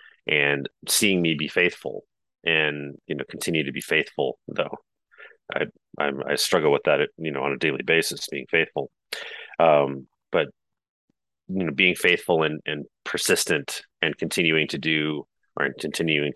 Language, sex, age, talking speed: English, male, 30-49, 155 wpm